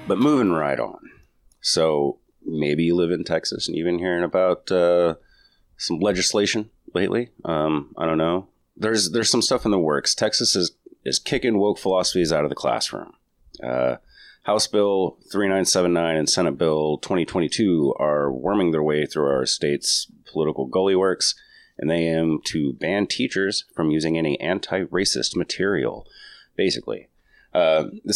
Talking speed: 165 wpm